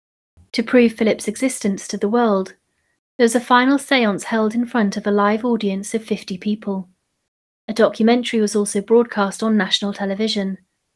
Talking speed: 165 wpm